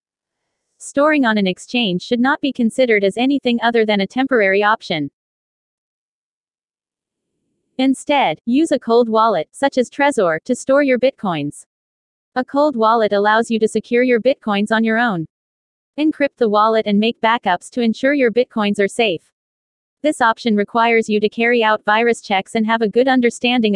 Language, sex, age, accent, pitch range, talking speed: Filipino, female, 30-49, American, 210-255 Hz, 165 wpm